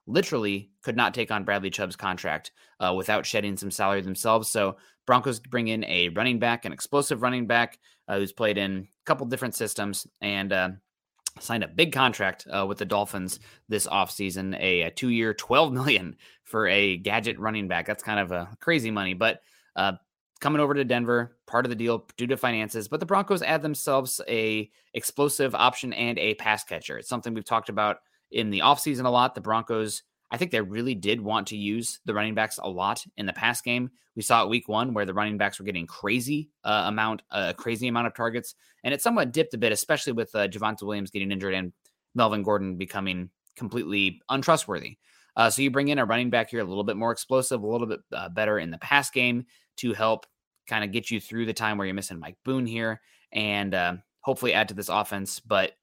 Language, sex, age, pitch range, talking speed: English, male, 20-39, 100-125 Hz, 215 wpm